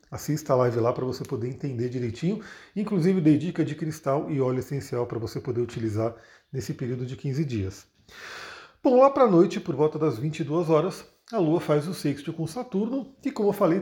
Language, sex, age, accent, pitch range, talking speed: Portuguese, male, 40-59, Brazilian, 130-170 Hz, 205 wpm